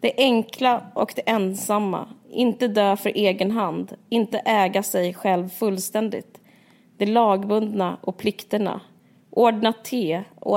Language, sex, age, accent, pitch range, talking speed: Swedish, female, 20-39, native, 195-230 Hz, 125 wpm